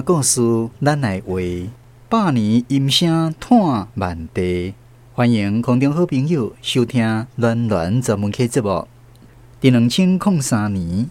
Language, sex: Chinese, male